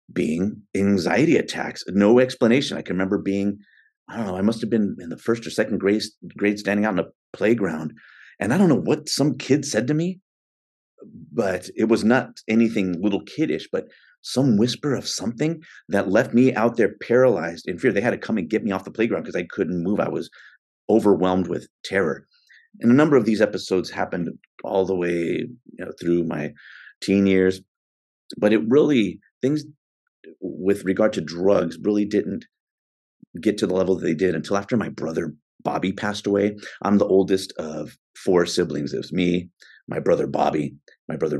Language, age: English, 30-49